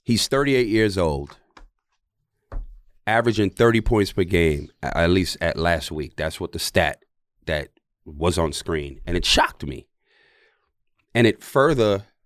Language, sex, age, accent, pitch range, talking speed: English, male, 30-49, American, 90-125 Hz, 140 wpm